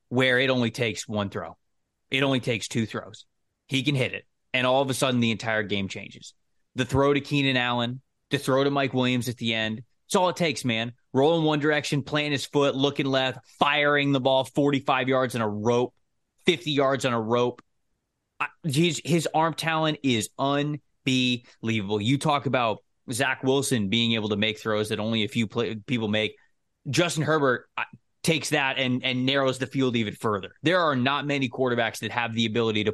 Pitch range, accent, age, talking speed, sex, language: 105-135 Hz, American, 20-39, 200 wpm, male, English